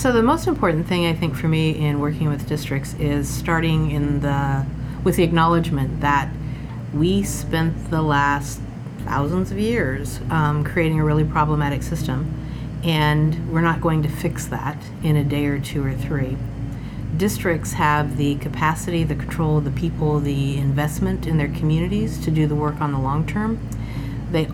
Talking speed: 165 wpm